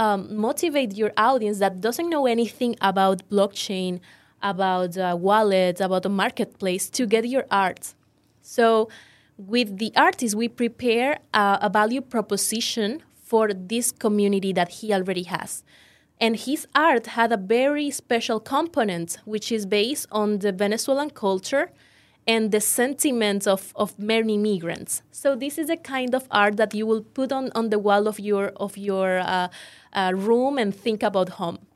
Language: English